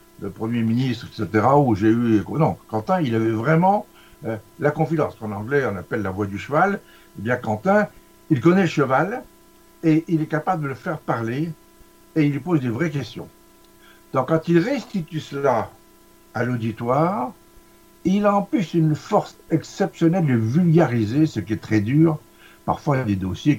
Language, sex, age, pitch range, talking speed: French, male, 60-79, 110-160 Hz, 185 wpm